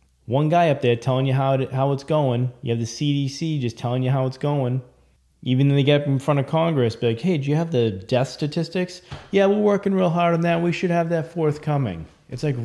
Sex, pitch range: male, 105-140 Hz